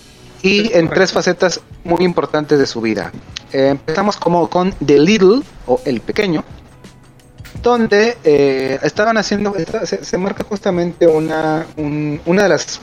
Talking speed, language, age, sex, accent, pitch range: 145 wpm, Spanish, 30-49, male, Mexican, 130-190 Hz